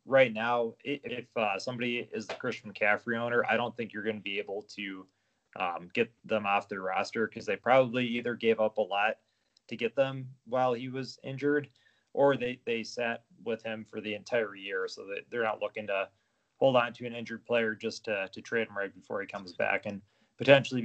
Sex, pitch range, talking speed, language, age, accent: male, 110-120 Hz, 215 wpm, English, 20-39, American